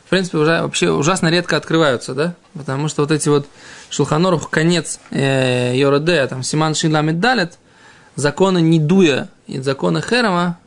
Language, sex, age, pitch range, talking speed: Russian, male, 20-39, 145-185 Hz, 135 wpm